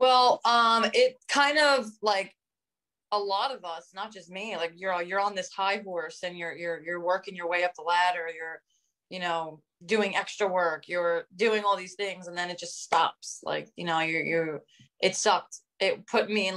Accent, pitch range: American, 170-200 Hz